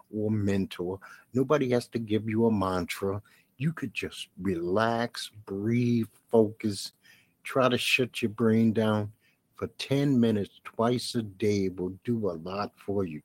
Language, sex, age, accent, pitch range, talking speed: English, male, 60-79, American, 100-125 Hz, 150 wpm